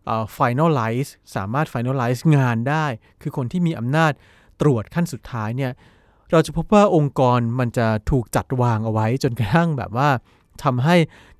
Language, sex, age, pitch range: Thai, male, 20-39, 115-160 Hz